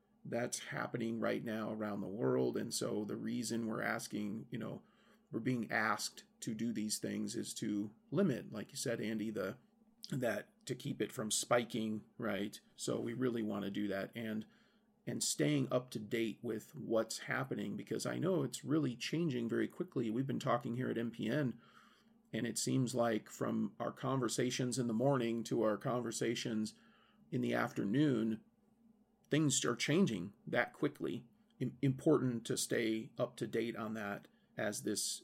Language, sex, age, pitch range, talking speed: English, male, 40-59, 110-140 Hz, 165 wpm